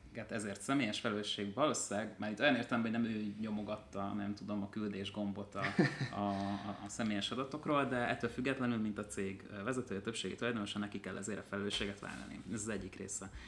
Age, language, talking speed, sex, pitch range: 30-49, Hungarian, 190 wpm, male, 100-115 Hz